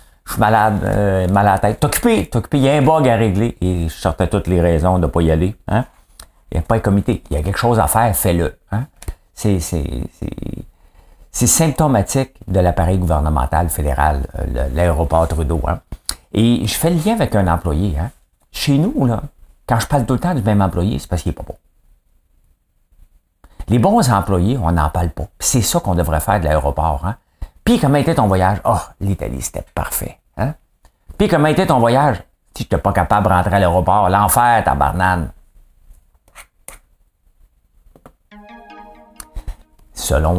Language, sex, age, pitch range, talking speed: English, male, 50-69, 80-110 Hz, 190 wpm